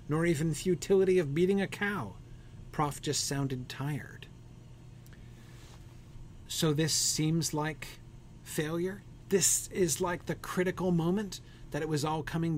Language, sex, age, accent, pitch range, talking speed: English, male, 40-59, American, 130-165 Hz, 130 wpm